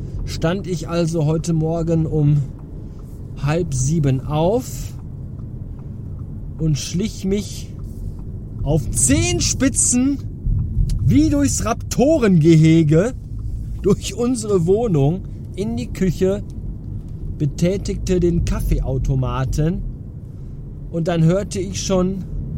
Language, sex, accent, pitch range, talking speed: German, male, German, 115-165 Hz, 85 wpm